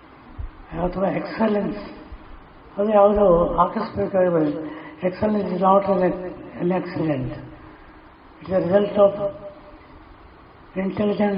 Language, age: Kannada, 60-79